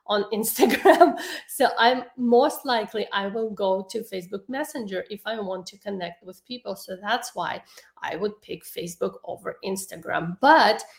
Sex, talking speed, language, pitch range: female, 160 wpm, English, 190-235 Hz